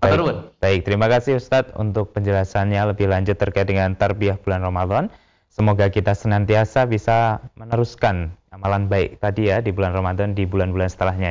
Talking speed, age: 155 wpm, 20-39